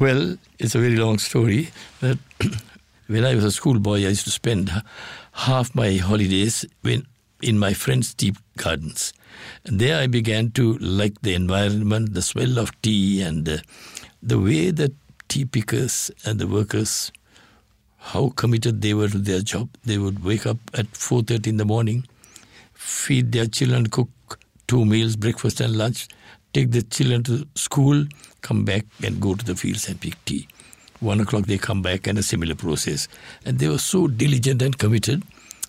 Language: English